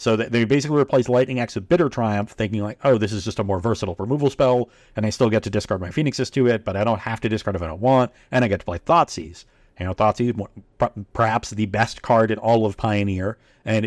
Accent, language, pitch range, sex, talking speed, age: American, English, 105-130 Hz, male, 255 wpm, 40-59